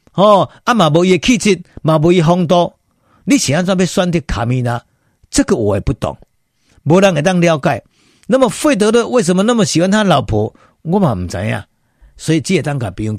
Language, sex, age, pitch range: Chinese, male, 50-69, 110-165 Hz